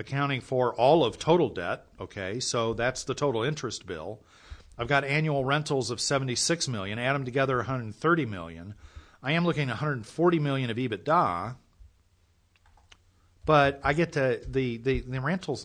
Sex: male